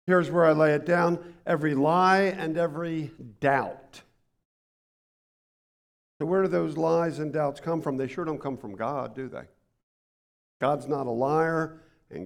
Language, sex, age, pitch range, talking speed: English, male, 50-69, 140-180 Hz, 160 wpm